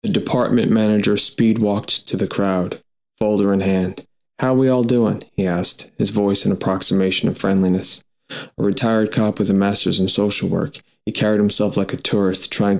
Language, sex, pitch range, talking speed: English, male, 90-110 Hz, 185 wpm